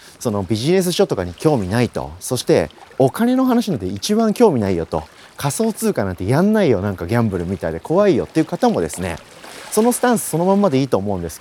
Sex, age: male, 40-59